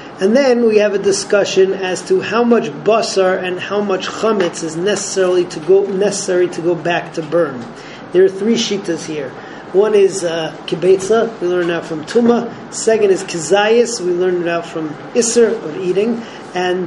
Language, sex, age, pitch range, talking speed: English, male, 40-59, 175-215 Hz, 180 wpm